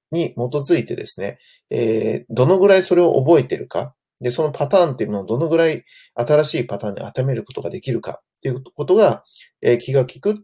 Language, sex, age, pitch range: Japanese, male, 40-59, 115-170 Hz